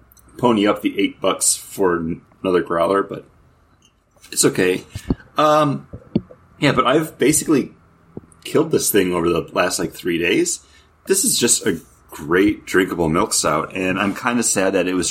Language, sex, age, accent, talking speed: English, male, 30-49, American, 165 wpm